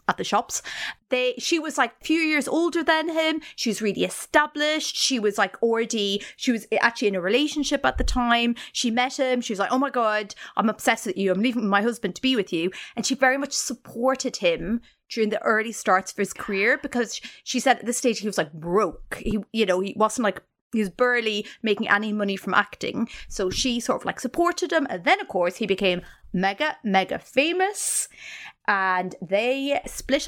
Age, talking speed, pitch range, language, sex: 30-49, 210 wpm, 200-260 Hz, English, female